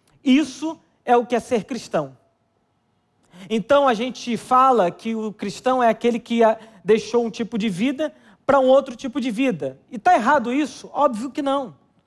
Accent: Brazilian